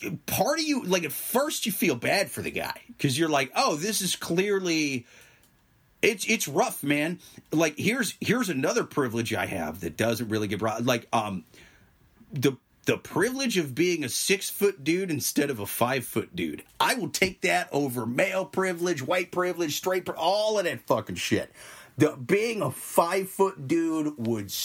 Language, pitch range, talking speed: English, 140-200 Hz, 180 wpm